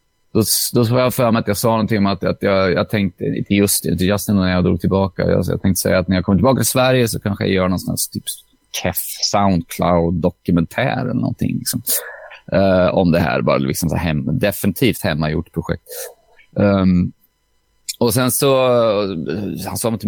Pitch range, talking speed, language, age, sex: 100-125 Hz, 190 wpm, Swedish, 30-49, male